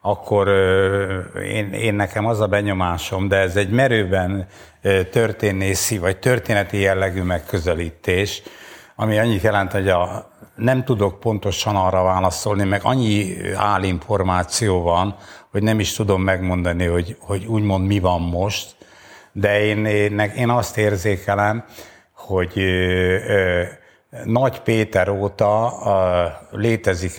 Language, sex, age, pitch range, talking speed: Hungarian, male, 60-79, 95-105 Hz, 115 wpm